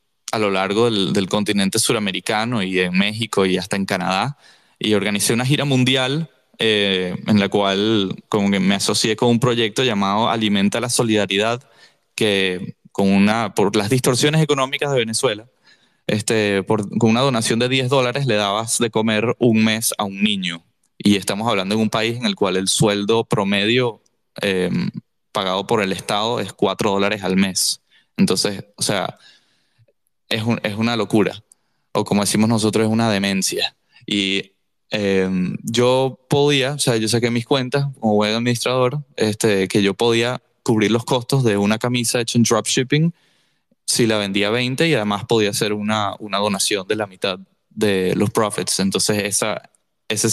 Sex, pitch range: male, 100-120 Hz